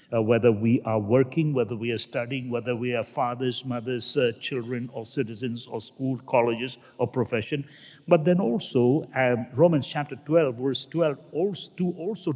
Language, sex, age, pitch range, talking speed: English, male, 60-79, 120-155 Hz, 160 wpm